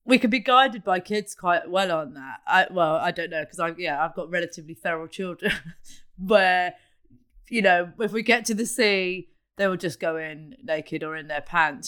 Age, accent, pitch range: 30-49, British, 170-210 Hz